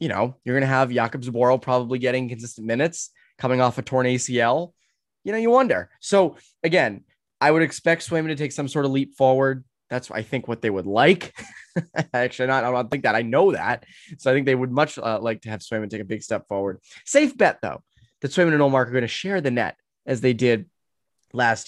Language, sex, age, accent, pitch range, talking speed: English, male, 20-39, American, 115-150 Hz, 235 wpm